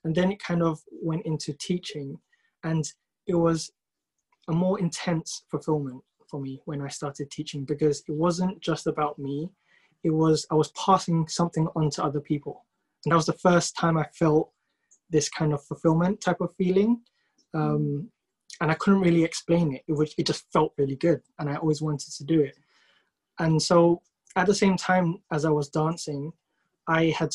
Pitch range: 150-170 Hz